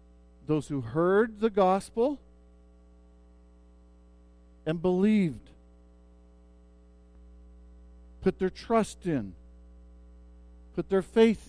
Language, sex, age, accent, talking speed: English, male, 50-69, American, 75 wpm